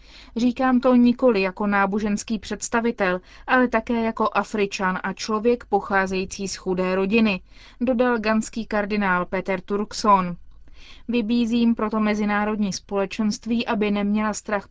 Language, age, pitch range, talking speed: Czech, 20-39, 195-235 Hz, 115 wpm